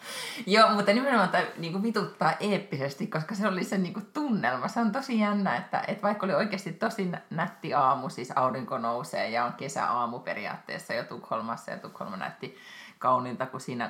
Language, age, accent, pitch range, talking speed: Finnish, 30-49, native, 150-210 Hz, 170 wpm